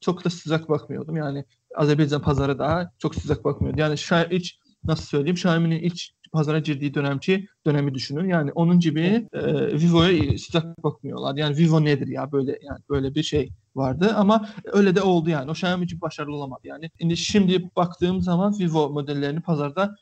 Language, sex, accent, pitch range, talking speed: Turkish, male, native, 150-185 Hz, 170 wpm